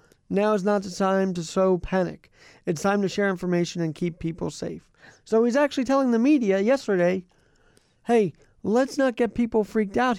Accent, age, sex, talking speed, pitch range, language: American, 40-59, male, 185 wpm, 155-210 Hz, English